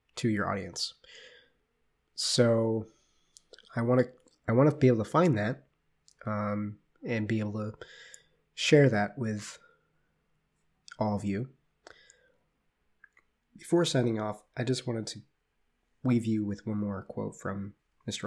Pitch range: 100-125 Hz